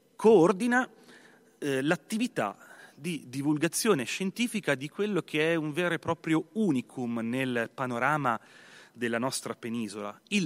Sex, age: male, 30-49